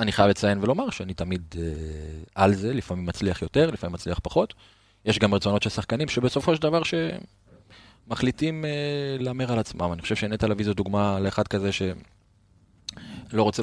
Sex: male